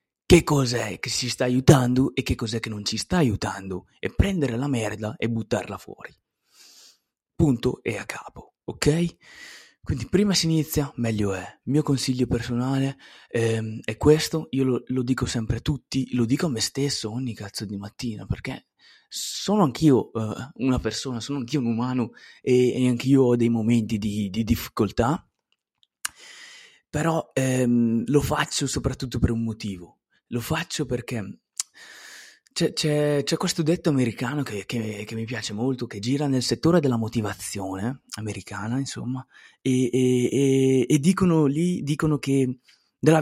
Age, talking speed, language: 20-39, 155 wpm, Italian